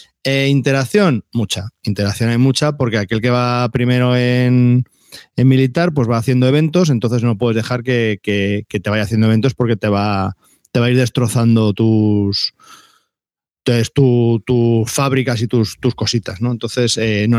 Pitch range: 115-135 Hz